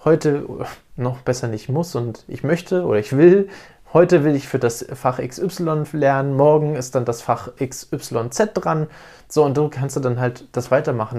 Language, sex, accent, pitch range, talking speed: German, male, German, 130-160 Hz, 180 wpm